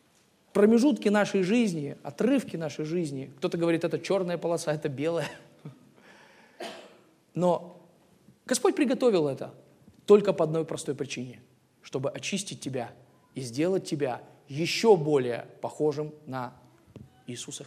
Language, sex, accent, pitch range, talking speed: Russian, male, native, 145-200 Hz, 110 wpm